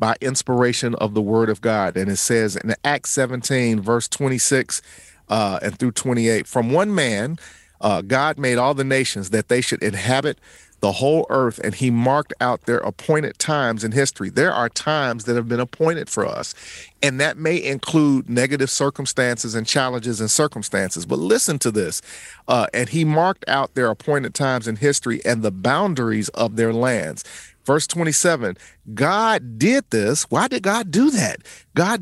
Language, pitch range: English, 120-165 Hz